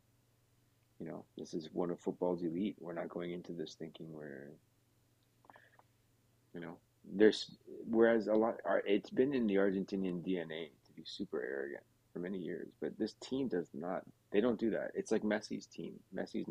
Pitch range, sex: 105-120 Hz, male